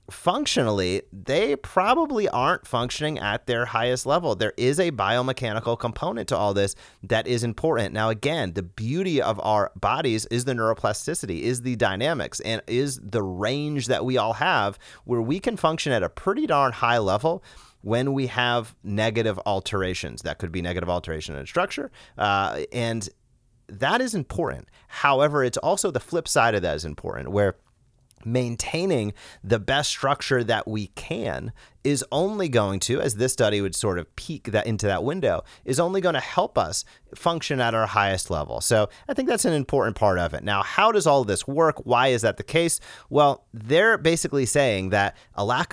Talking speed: 185 wpm